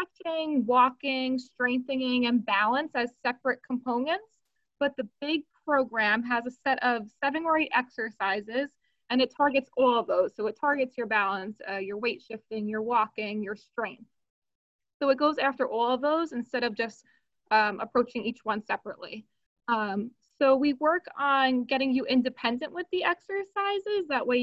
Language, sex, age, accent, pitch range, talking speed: English, female, 20-39, American, 235-300 Hz, 160 wpm